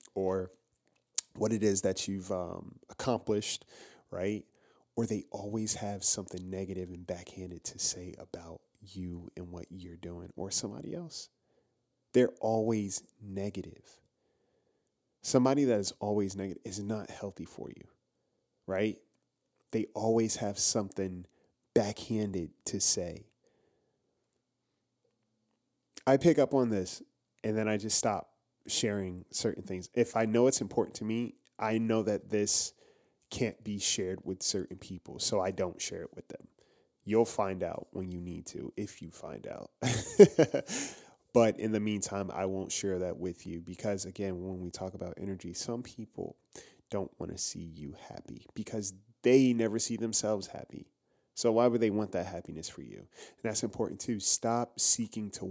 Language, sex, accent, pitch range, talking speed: English, male, American, 95-115 Hz, 155 wpm